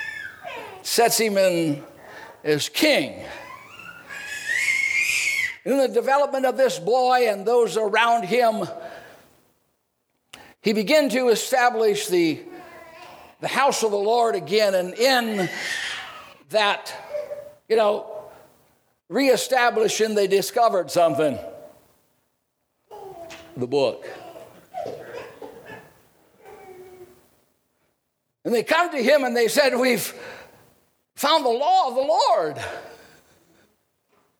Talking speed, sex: 90 wpm, male